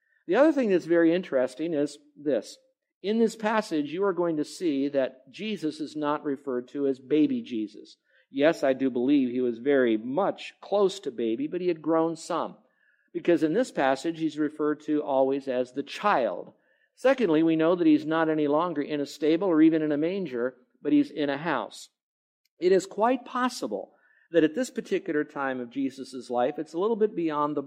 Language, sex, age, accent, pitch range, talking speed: English, male, 50-69, American, 135-175 Hz, 195 wpm